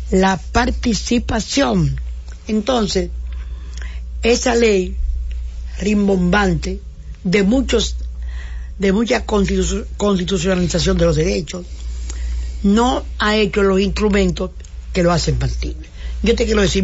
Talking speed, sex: 100 wpm, female